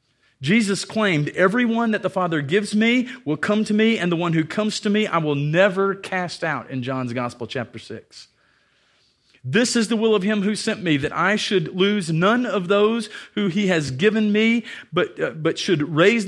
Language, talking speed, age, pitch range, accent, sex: English, 205 wpm, 40-59, 140-200 Hz, American, male